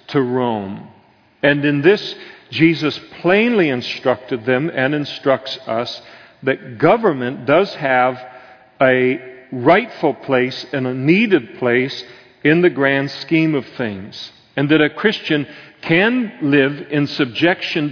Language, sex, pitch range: English, male, 130-160 Hz